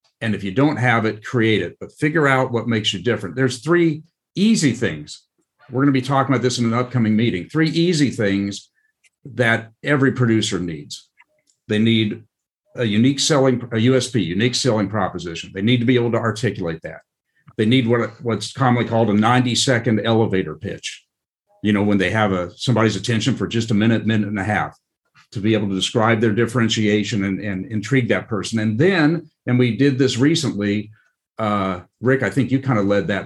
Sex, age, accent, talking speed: male, 50-69, American, 195 wpm